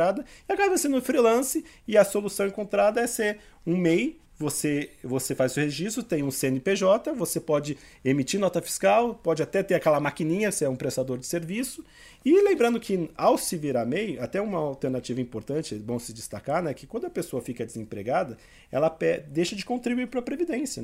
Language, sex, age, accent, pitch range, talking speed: Portuguese, male, 40-59, Brazilian, 125-200 Hz, 190 wpm